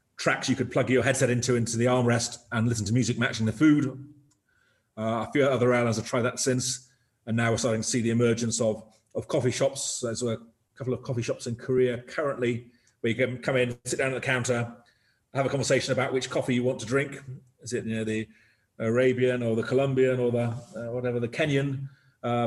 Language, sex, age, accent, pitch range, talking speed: English, male, 30-49, British, 115-130 Hz, 220 wpm